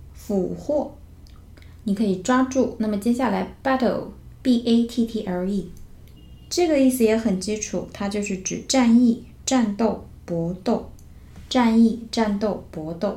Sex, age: female, 20-39